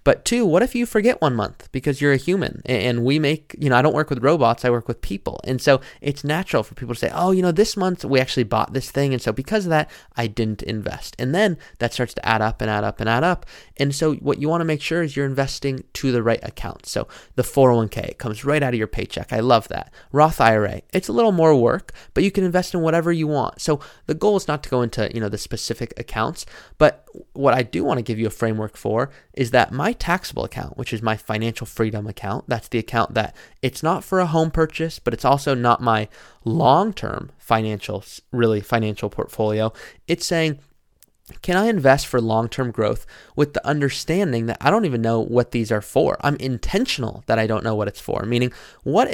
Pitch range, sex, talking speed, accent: 110-150 Hz, male, 240 wpm, American